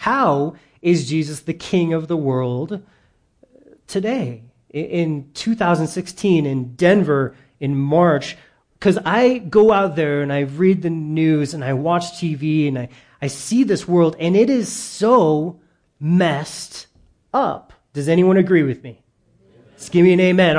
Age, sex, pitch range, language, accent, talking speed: 30-49, male, 150-200 Hz, English, American, 150 wpm